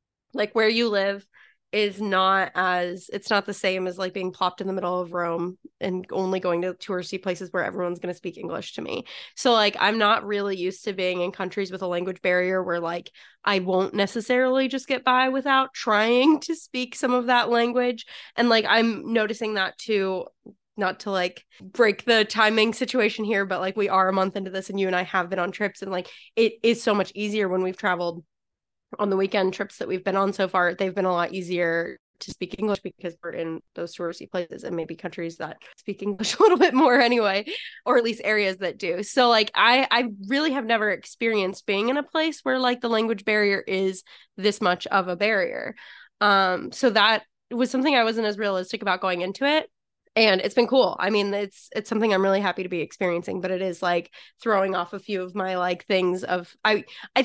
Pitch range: 185-225 Hz